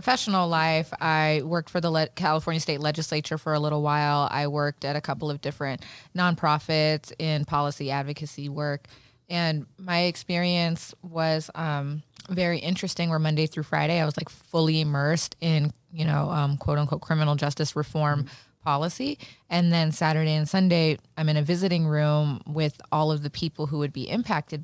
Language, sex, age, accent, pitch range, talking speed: English, female, 20-39, American, 145-160 Hz, 175 wpm